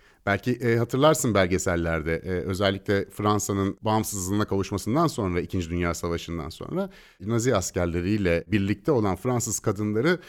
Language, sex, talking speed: Turkish, male, 115 wpm